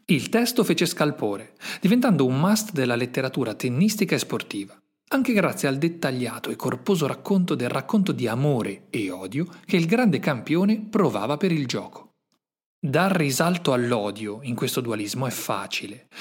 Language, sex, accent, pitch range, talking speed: Italian, male, native, 120-185 Hz, 150 wpm